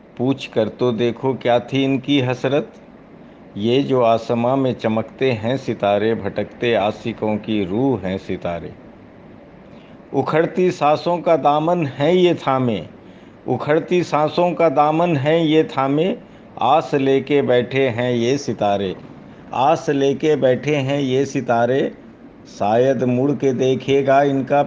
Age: 60-79